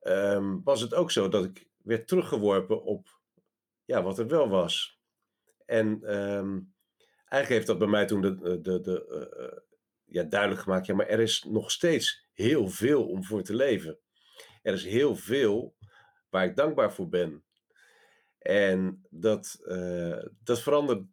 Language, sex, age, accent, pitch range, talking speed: Dutch, male, 50-69, Dutch, 95-110 Hz, 160 wpm